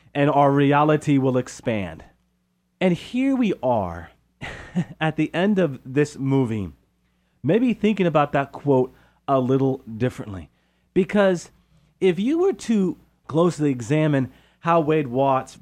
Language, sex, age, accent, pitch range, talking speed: English, male, 40-59, American, 135-175 Hz, 125 wpm